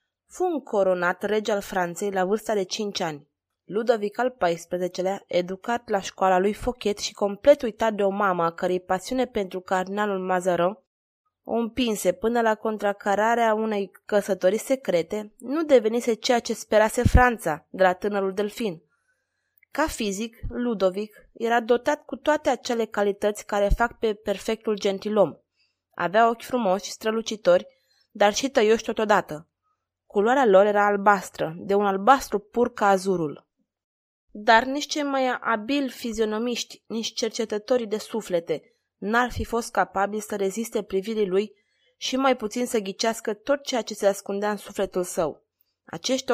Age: 20-39